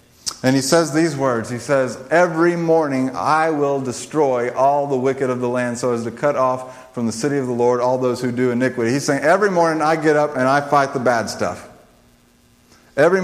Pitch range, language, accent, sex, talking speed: 115-145 Hz, English, American, male, 220 wpm